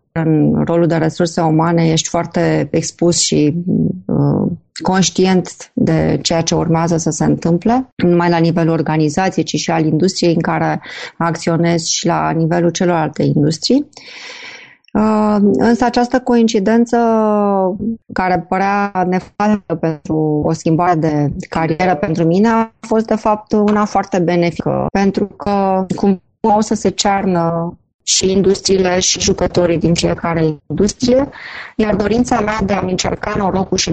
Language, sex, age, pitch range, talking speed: Romanian, female, 30-49, 170-210 Hz, 135 wpm